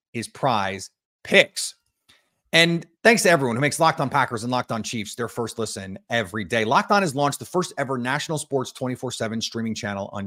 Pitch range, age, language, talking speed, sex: 110-155 Hz, 30-49, English, 205 wpm, male